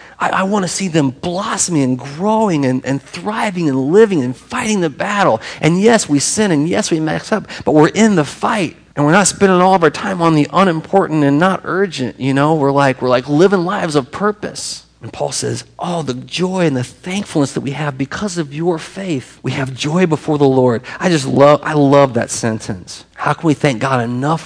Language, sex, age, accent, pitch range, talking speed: English, male, 40-59, American, 125-175 Hz, 225 wpm